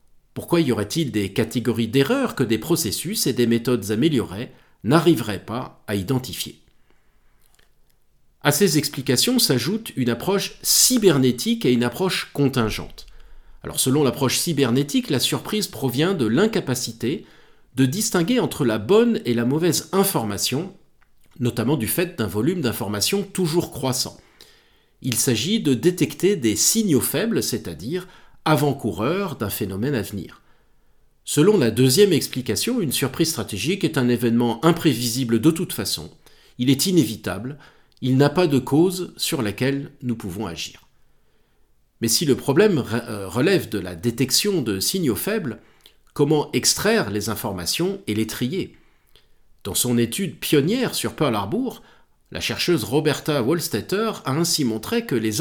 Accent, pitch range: French, 115-170 Hz